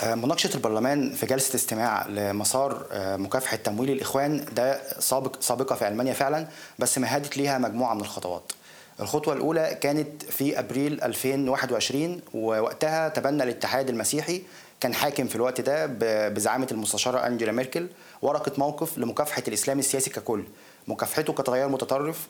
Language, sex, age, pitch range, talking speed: Arabic, male, 20-39, 120-150 Hz, 130 wpm